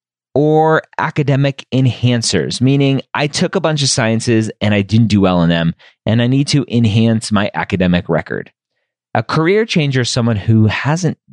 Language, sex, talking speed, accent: English, male, 170 wpm, American